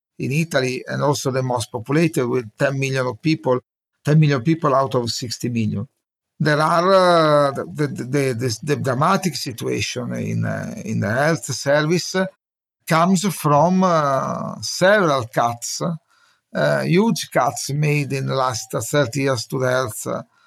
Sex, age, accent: male, 50-69, Italian